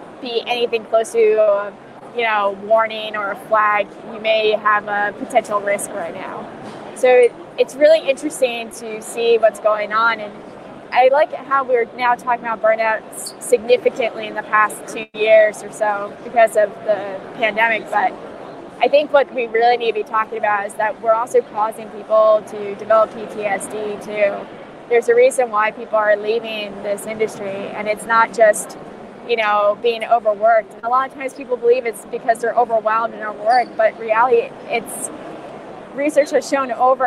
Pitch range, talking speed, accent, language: 215-260 Hz, 170 wpm, American, English